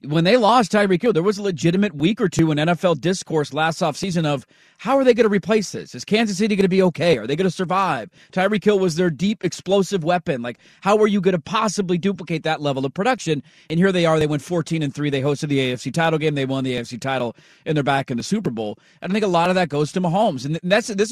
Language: English